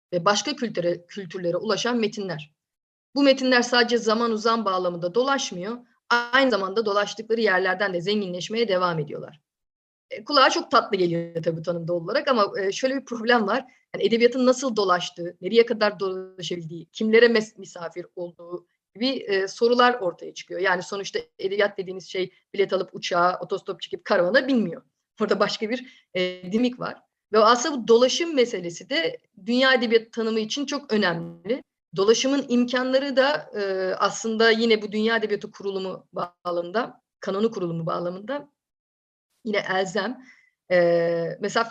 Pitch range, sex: 185-245 Hz, female